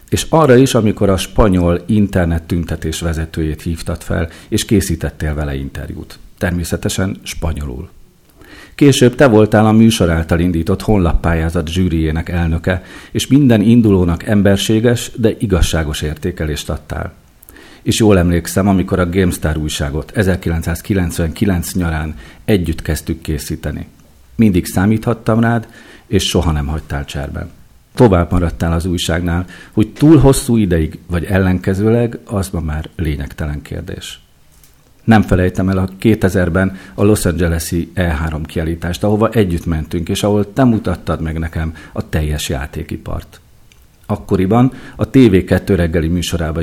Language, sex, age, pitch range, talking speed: Hungarian, male, 50-69, 80-105 Hz, 125 wpm